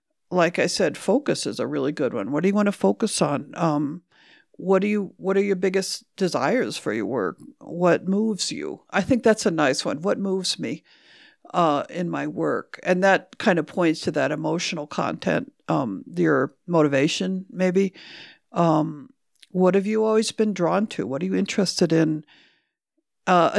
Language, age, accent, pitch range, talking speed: English, 50-69, American, 170-220 Hz, 180 wpm